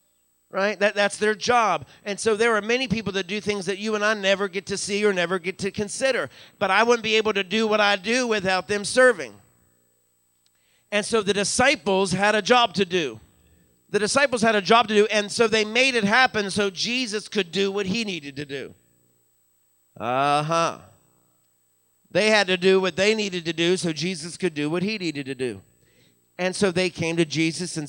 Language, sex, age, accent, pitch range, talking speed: English, male, 50-69, American, 145-200 Hz, 210 wpm